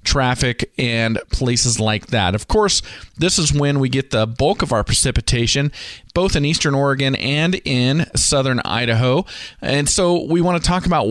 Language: English